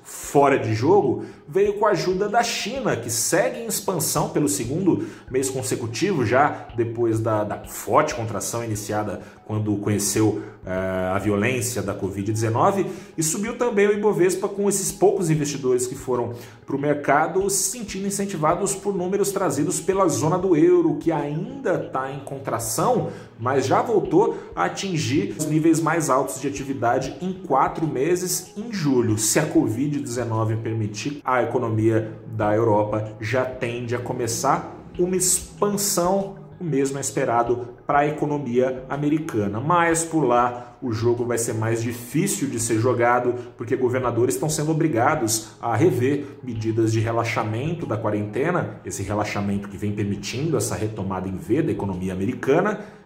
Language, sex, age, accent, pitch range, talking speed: Portuguese, male, 30-49, Brazilian, 110-180 Hz, 150 wpm